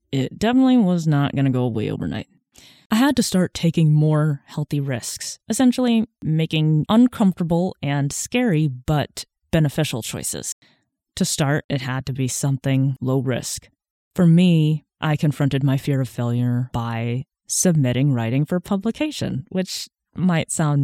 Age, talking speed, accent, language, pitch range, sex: 20-39, 145 wpm, American, English, 130-165 Hz, female